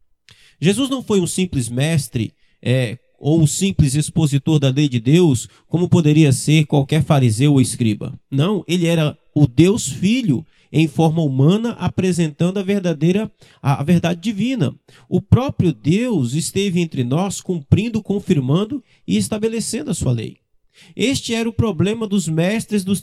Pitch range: 150-205 Hz